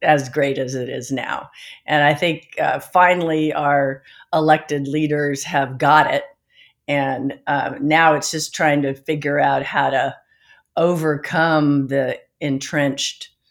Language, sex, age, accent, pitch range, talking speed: English, female, 50-69, American, 135-160 Hz, 140 wpm